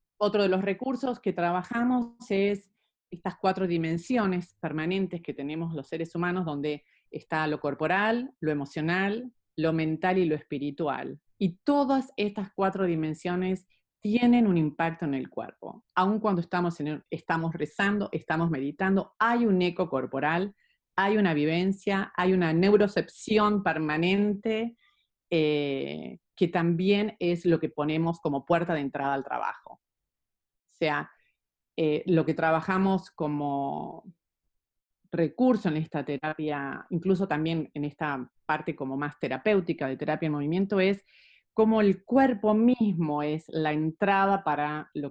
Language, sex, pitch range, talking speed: Spanish, female, 155-195 Hz, 140 wpm